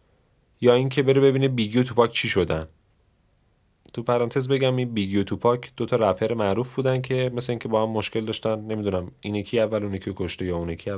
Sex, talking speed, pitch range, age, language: male, 185 wpm, 100-125 Hz, 30-49, Persian